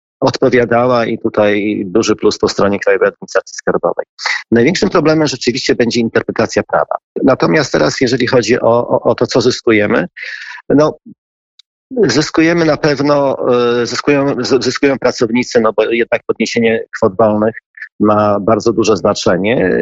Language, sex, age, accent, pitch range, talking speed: Polish, male, 40-59, native, 115-155 Hz, 130 wpm